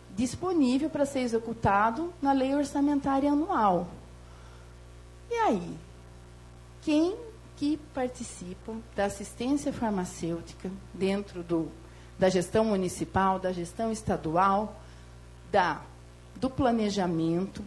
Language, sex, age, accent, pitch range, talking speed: Portuguese, female, 40-59, Brazilian, 160-240 Hz, 90 wpm